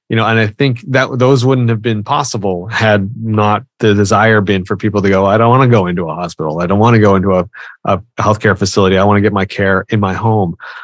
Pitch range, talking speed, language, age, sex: 100-125 Hz, 260 wpm, English, 30-49, male